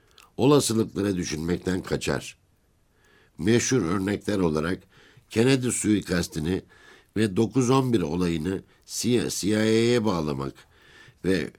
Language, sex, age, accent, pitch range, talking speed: Turkish, male, 60-79, native, 80-110 Hz, 70 wpm